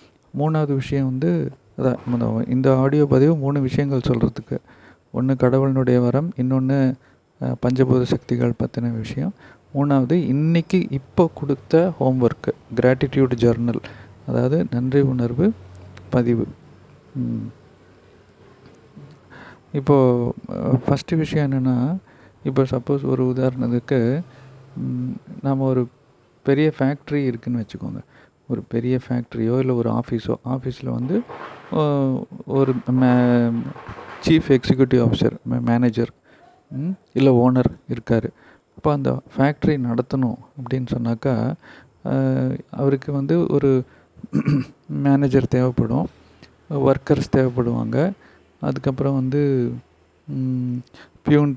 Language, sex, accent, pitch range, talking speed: Tamil, male, native, 120-140 Hz, 90 wpm